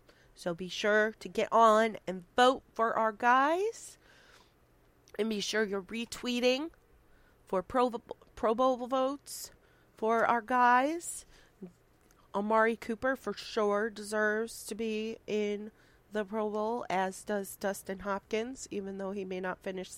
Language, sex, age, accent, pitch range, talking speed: English, female, 30-49, American, 175-220 Hz, 135 wpm